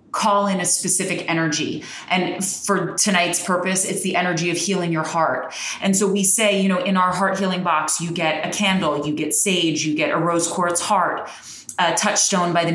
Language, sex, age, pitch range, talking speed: English, female, 20-39, 165-190 Hz, 205 wpm